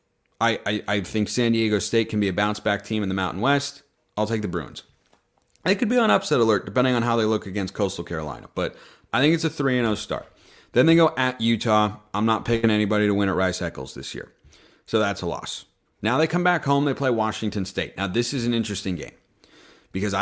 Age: 30-49